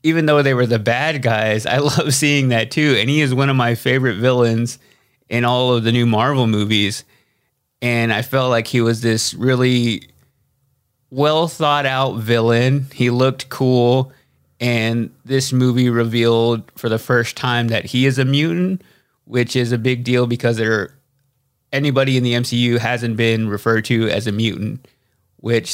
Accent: American